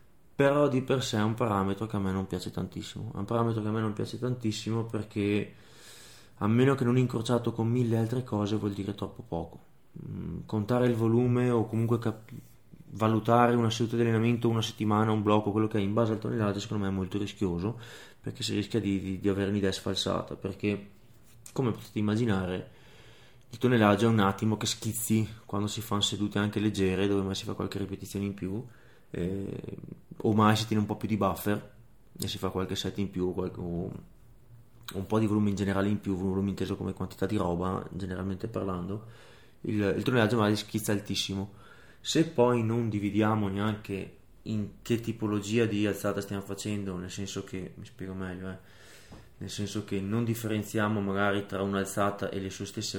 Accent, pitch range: native, 100-115 Hz